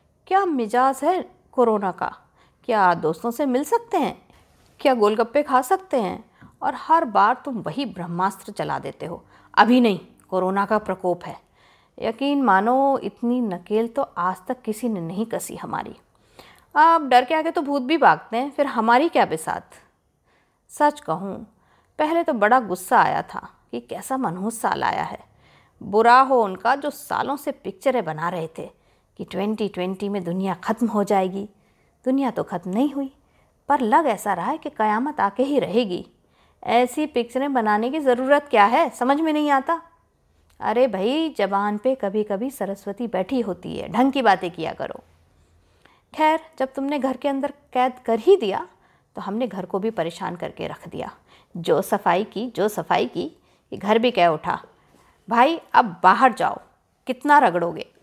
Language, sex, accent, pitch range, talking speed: Hindi, female, native, 195-275 Hz, 170 wpm